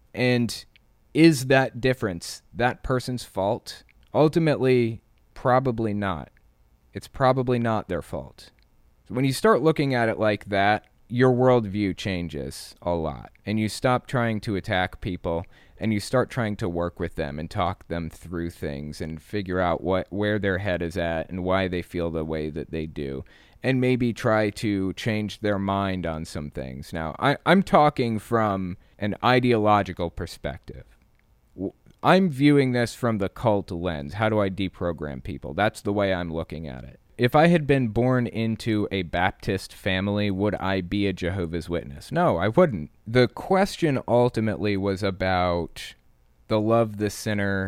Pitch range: 85-120 Hz